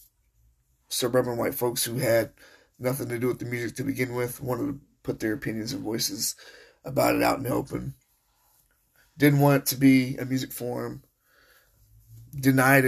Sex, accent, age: male, American, 30-49